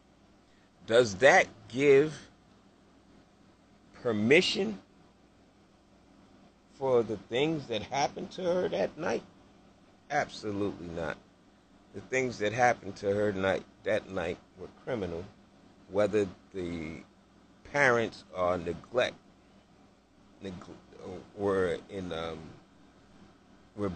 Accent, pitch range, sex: American, 95-115 Hz, male